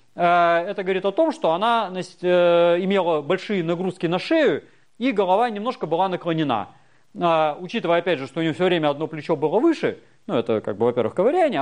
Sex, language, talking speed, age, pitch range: male, Russian, 185 wpm, 30-49, 150-215 Hz